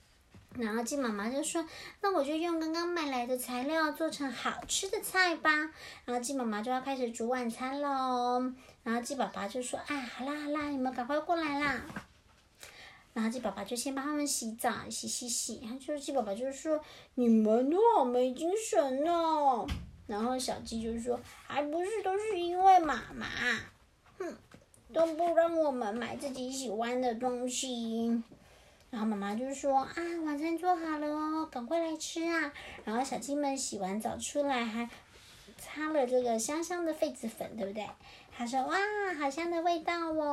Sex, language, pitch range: male, Chinese, 250-335 Hz